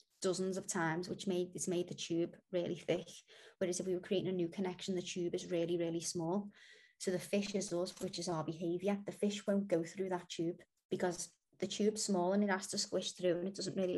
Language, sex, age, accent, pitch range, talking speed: English, female, 20-39, British, 180-205 Hz, 235 wpm